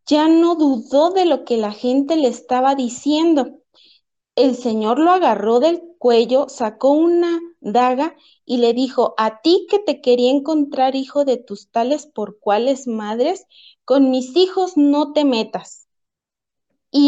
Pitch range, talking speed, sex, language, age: 225-295 Hz, 150 wpm, female, Spanish, 30-49